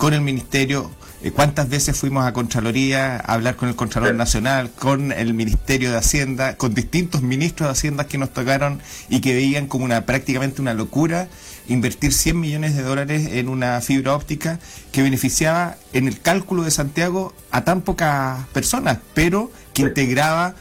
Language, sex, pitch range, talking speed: Spanish, male, 130-160 Hz, 170 wpm